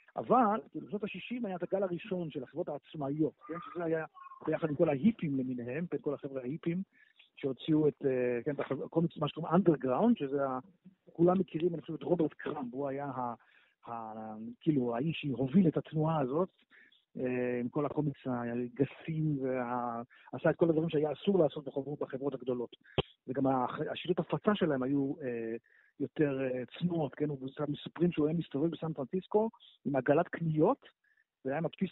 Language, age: Hebrew, 50-69